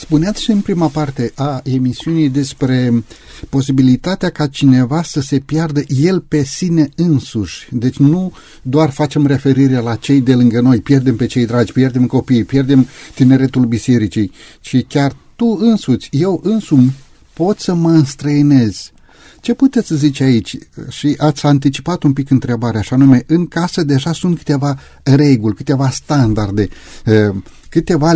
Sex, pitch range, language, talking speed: male, 130-165 Hz, Romanian, 145 wpm